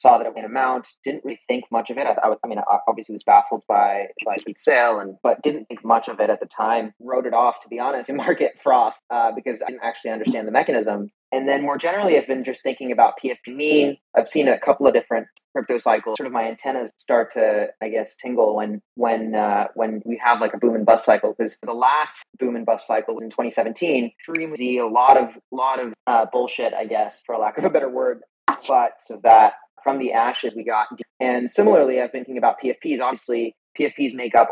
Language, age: English, 30-49